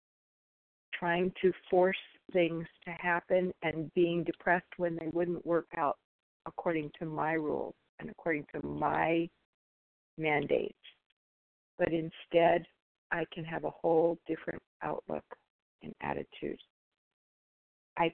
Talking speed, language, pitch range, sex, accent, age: 115 wpm, English, 160-175 Hz, female, American, 50-69